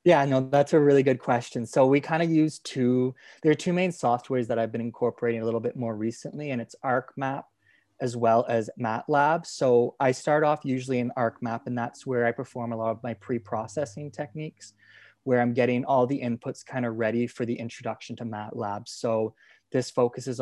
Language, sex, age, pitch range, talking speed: English, male, 20-39, 115-135 Hz, 205 wpm